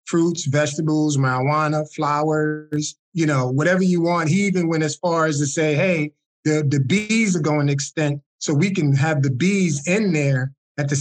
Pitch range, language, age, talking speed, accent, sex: 145-170 Hz, English, 20-39, 190 wpm, American, male